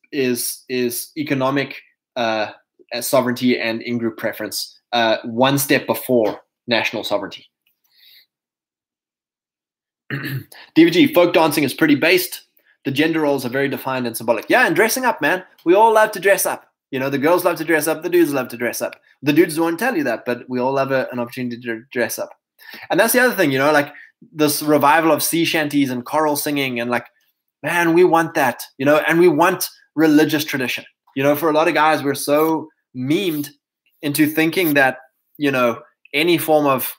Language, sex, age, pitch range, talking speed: English, male, 20-39, 130-170 Hz, 190 wpm